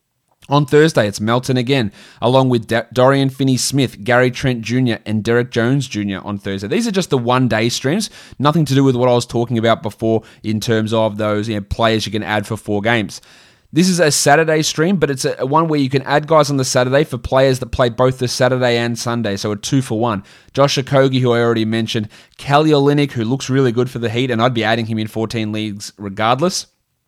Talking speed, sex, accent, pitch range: 215 wpm, male, Australian, 110-135 Hz